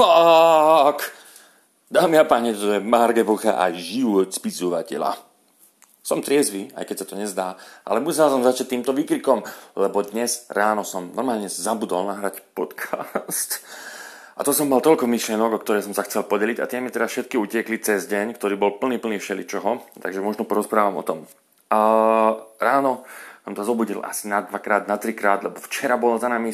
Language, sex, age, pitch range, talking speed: Slovak, male, 30-49, 100-120 Hz, 175 wpm